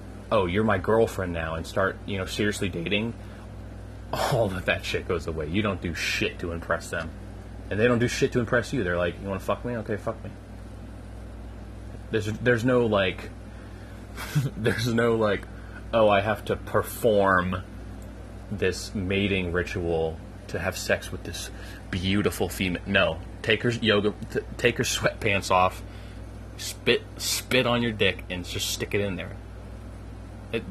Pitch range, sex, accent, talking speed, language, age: 95-110 Hz, male, American, 165 wpm, English, 30-49